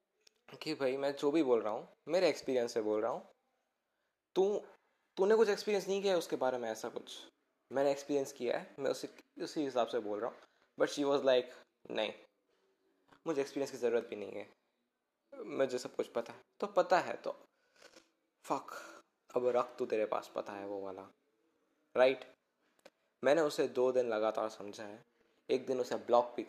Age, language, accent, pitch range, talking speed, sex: 10-29, Hindi, native, 120-150 Hz, 185 wpm, male